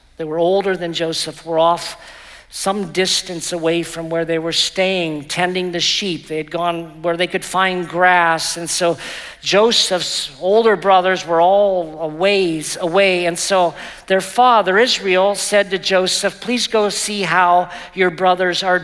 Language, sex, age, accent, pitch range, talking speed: English, male, 50-69, American, 165-195 Hz, 160 wpm